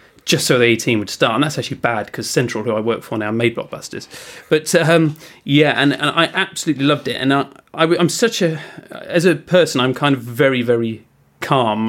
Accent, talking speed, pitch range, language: British, 205 wpm, 120-160 Hz, English